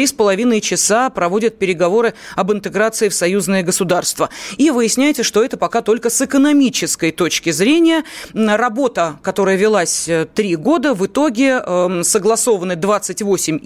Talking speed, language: 125 wpm, Russian